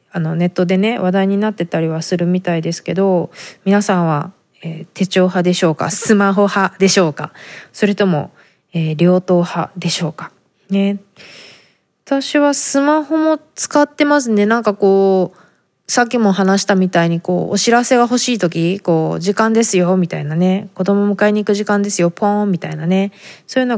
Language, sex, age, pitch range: Japanese, female, 20-39, 180-215 Hz